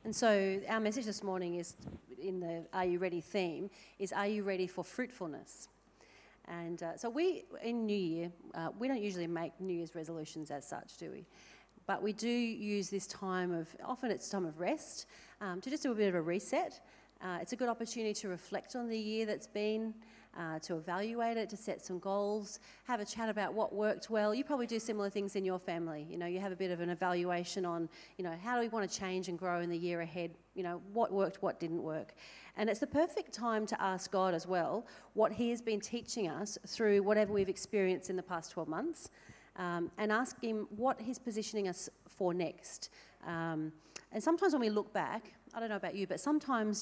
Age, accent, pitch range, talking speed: 40-59, Australian, 175-225 Hz, 225 wpm